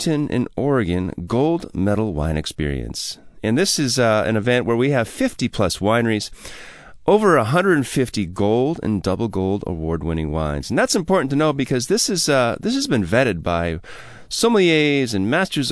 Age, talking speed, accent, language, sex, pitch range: 30-49, 170 wpm, American, English, male, 100-145 Hz